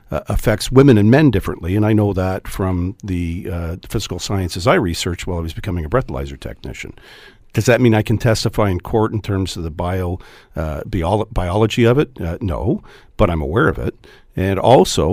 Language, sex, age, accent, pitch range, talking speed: English, male, 50-69, American, 90-120 Hz, 200 wpm